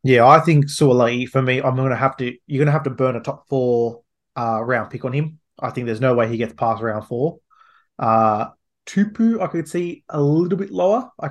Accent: Australian